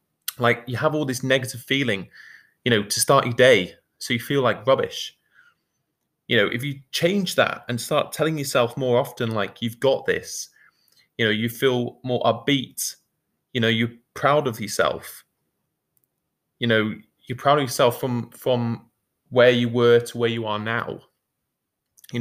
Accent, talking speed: British, 170 wpm